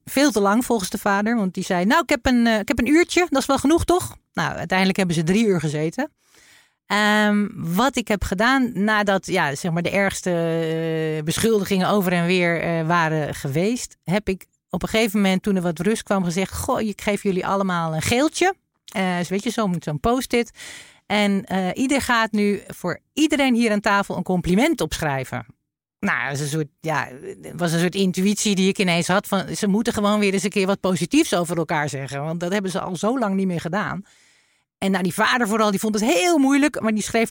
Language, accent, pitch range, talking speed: English, Dutch, 175-230 Hz, 215 wpm